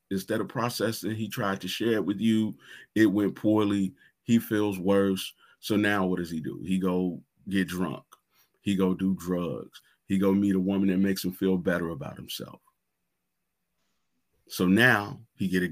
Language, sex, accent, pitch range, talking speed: English, male, American, 90-100 Hz, 180 wpm